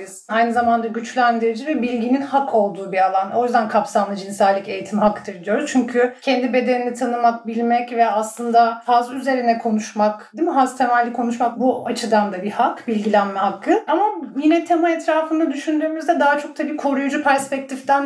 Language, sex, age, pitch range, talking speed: Turkish, female, 40-59, 215-265 Hz, 160 wpm